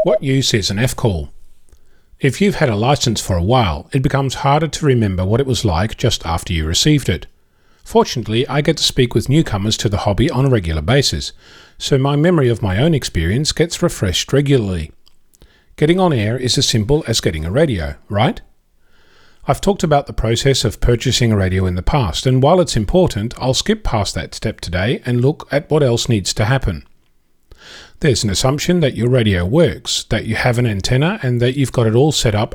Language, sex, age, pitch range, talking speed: English, male, 40-59, 105-145 Hz, 205 wpm